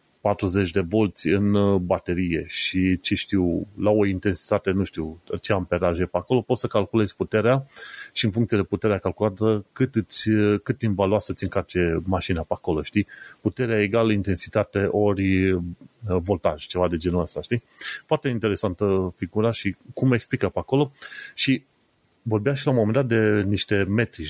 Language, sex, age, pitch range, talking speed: Romanian, male, 30-49, 95-125 Hz, 170 wpm